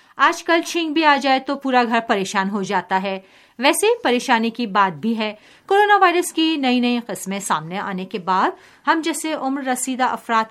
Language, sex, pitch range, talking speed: Urdu, female, 205-320 Hz, 195 wpm